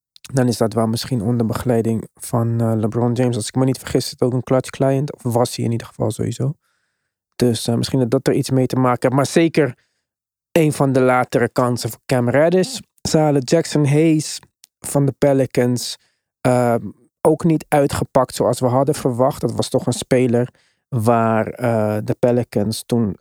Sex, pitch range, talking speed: male, 120-145 Hz, 190 wpm